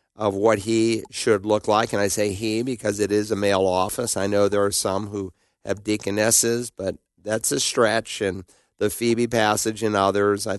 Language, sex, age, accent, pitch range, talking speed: English, male, 40-59, American, 100-115 Hz, 200 wpm